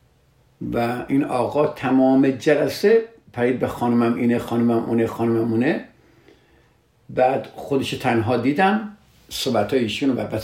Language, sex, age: Persian, male, 50-69